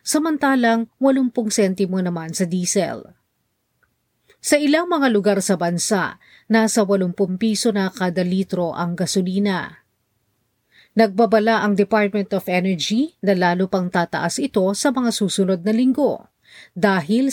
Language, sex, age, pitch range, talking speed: Filipino, female, 40-59, 185-235 Hz, 125 wpm